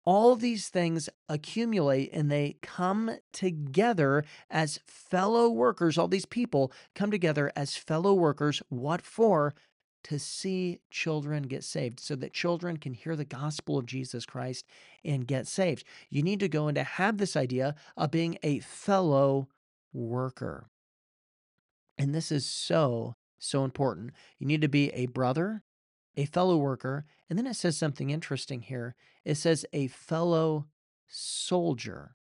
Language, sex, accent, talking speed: English, male, American, 150 wpm